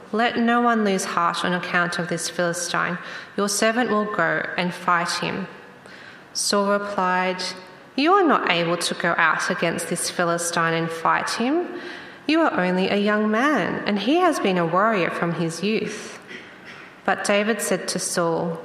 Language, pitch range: English, 175-225 Hz